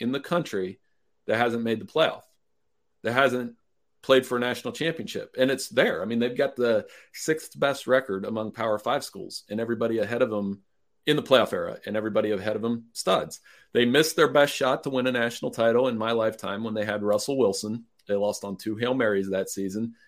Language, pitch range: English, 105-130 Hz